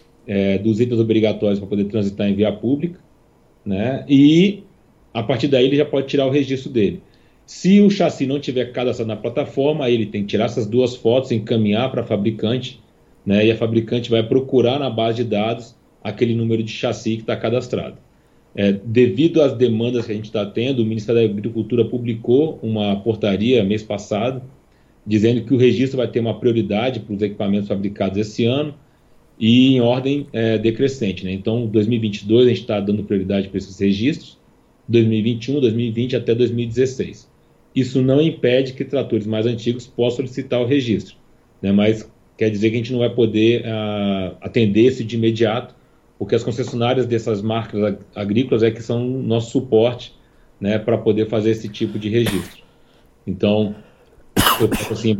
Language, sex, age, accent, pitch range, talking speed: Portuguese, male, 40-59, Brazilian, 105-125 Hz, 170 wpm